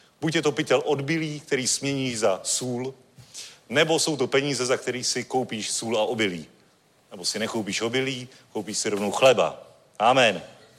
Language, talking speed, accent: Czech, 160 wpm, native